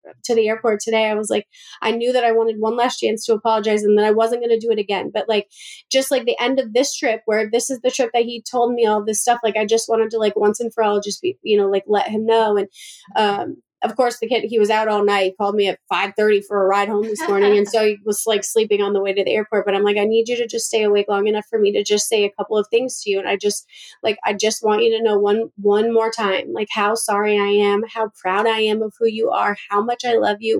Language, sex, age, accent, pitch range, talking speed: English, female, 20-39, American, 210-240 Hz, 300 wpm